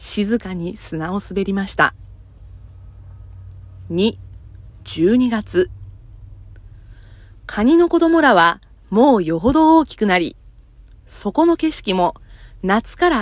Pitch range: 160-245 Hz